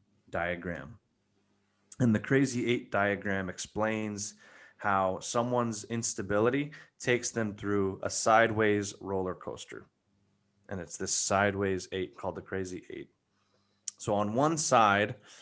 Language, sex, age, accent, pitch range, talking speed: English, male, 20-39, American, 95-115 Hz, 115 wpm